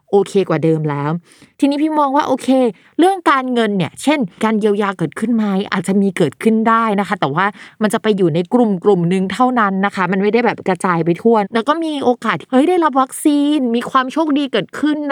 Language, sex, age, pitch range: Thai, female, 20-39, 180-240 Hz